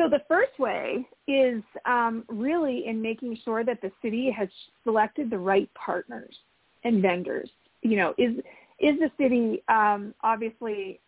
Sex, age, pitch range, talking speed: female, 30-49, 200-250 Hz, 150 wpm